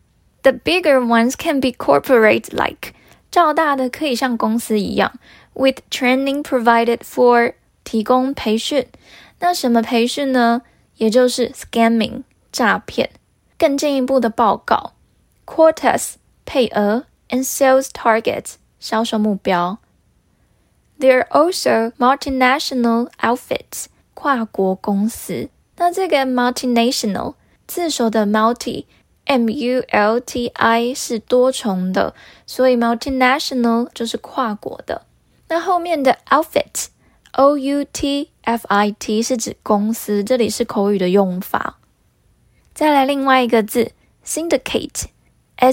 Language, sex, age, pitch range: Chinese, female, 10-29, 225-270 Hz